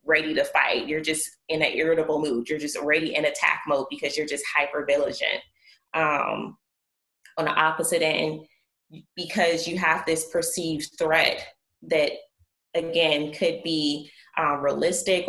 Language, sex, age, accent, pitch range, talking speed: English, female, 20-39, American, 150-170 Hz, 145 wpm